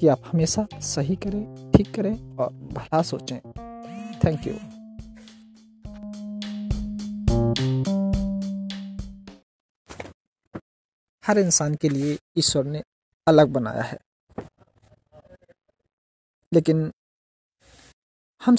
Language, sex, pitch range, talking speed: Hindi, male, 145-200 Hz, 75 wpm